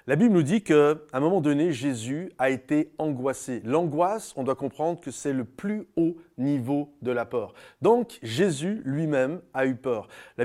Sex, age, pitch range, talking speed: male, 30-49, 130-170 Hz, 185 wpm